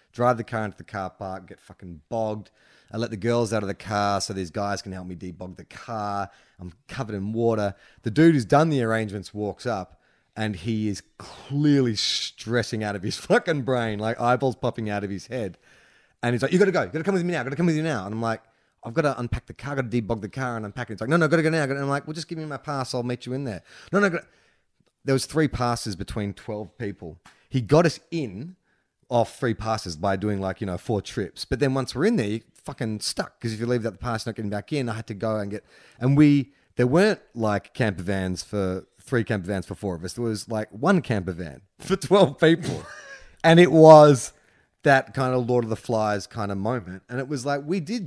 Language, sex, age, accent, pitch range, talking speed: English, male, 30-49, Australian, 100-140 Hz, 255 wpm